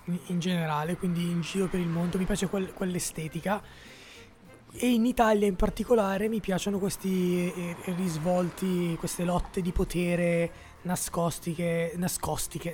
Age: 20-39